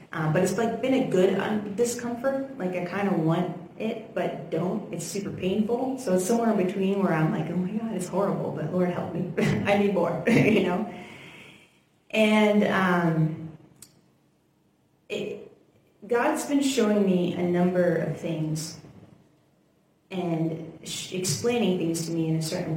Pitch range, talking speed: 165-195 Hz, 155 wpm